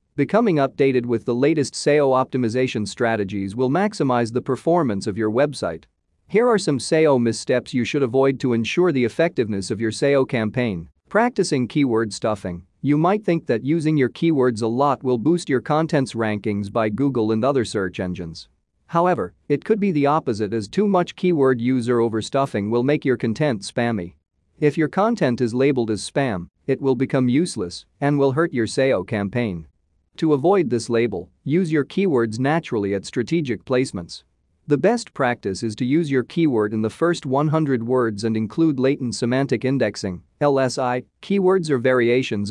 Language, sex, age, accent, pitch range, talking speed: English, male, 40-59, American, 110-145 Hz, 170 wpm